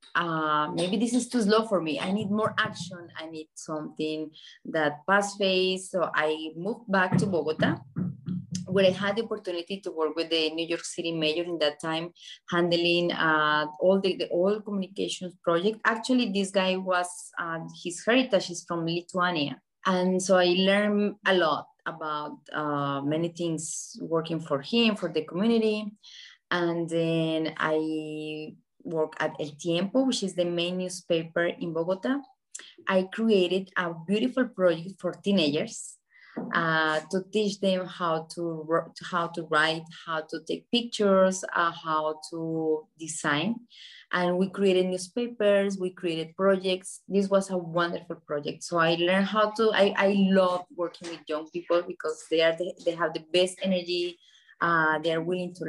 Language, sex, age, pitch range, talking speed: English, female, 30-49, 160-195 Hz, 160 wpm